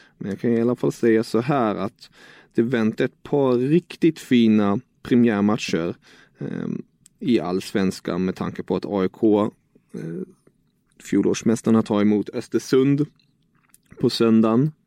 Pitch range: 110-135 Hz